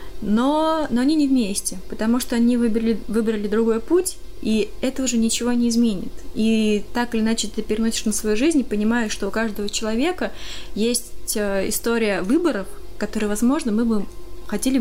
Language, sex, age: Russian, female, 20-39